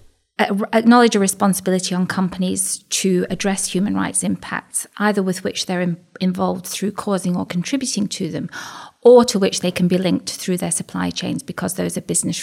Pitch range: 175-200 Hz